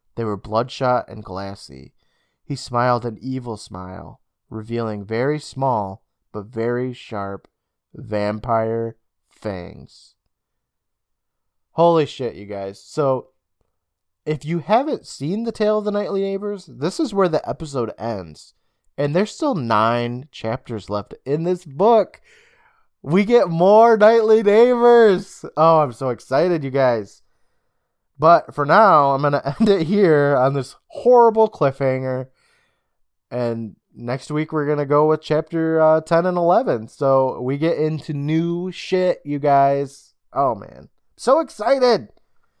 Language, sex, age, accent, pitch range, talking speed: English, male, 20-39, American, 110-165 Hz, 135 wpm